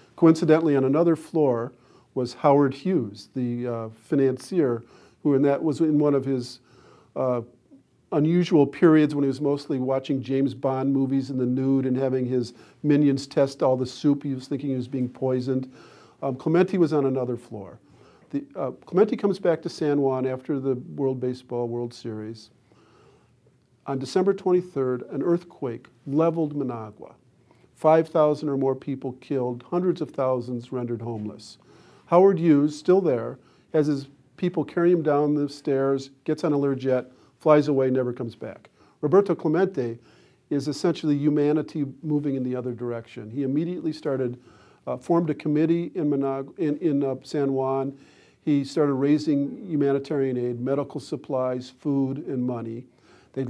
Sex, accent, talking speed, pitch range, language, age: male, American, 155 wpm, 130-155 Hz, English, 50-69